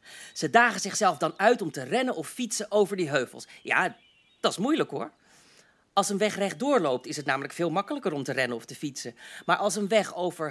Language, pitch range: English, 155-220 Hz